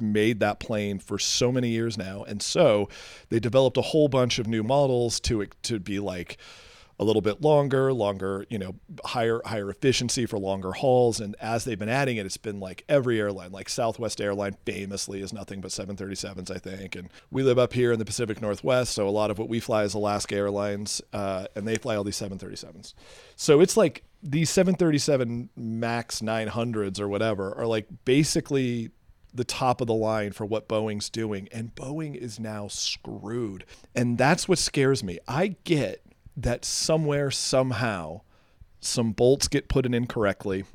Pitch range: 100-125 Hz